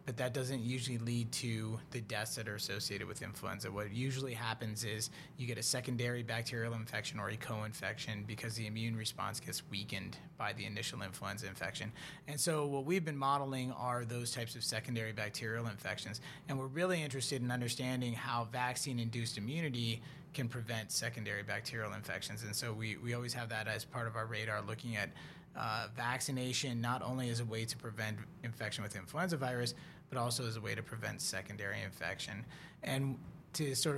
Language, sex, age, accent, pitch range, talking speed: English, male, 30-49, American, 115-135 Hz, 180 wpm